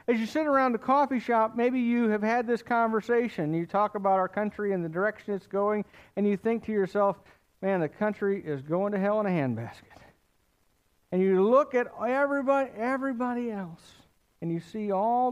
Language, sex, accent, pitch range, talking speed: English, male, American, 135-210 Hz, 190 wpm